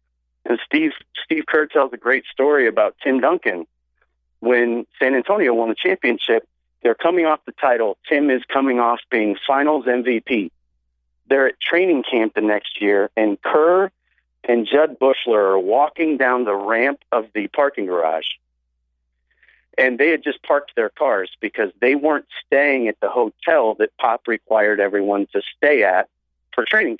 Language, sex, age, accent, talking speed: English, male, 40-59, American, 160 wpm